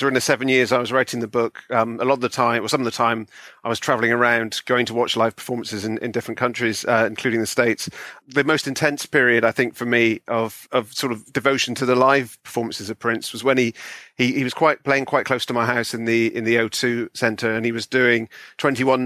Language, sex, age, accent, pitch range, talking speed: English, male, 40-59, British, 115-130 Hz, 255 wpm